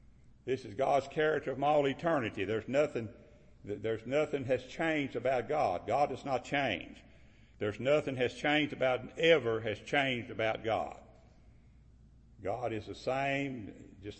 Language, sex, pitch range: English, male, 110-140 Hz